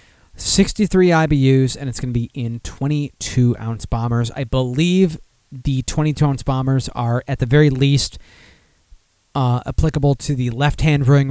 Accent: American